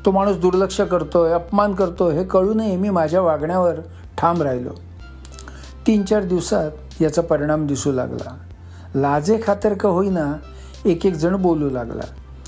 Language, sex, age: Marathi, male, 60-79